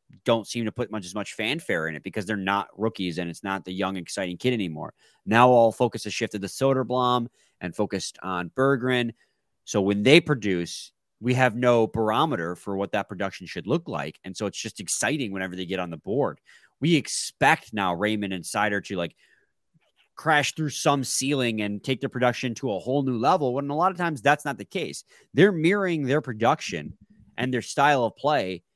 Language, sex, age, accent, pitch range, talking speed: English, male, 30-49, American, 100-135 Hz, 205 wpm